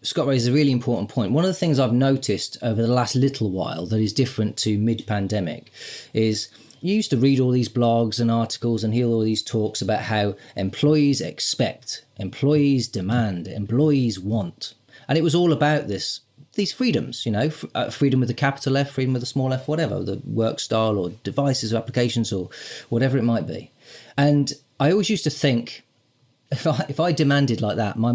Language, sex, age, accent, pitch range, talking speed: English, male, 30-49, British, 110-145 Hz, 195 wpm